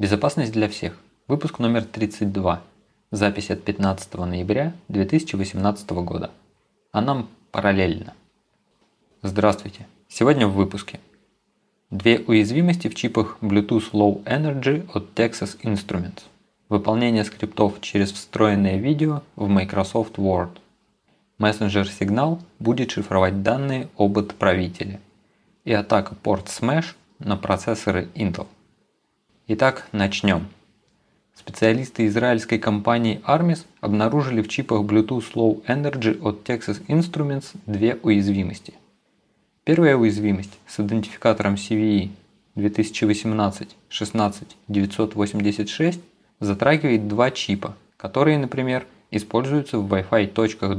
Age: 20-39